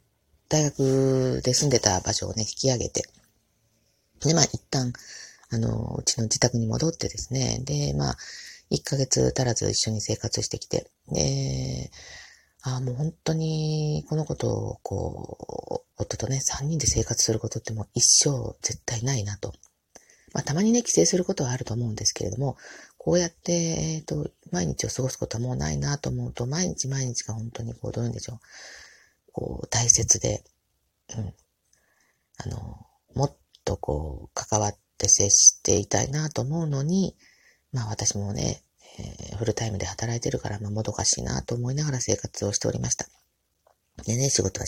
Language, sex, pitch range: Japanese, female, 105-135 Hz